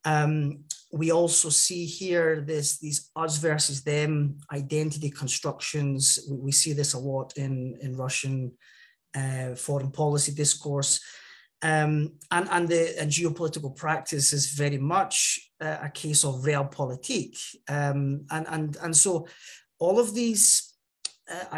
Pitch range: 140-165 Hz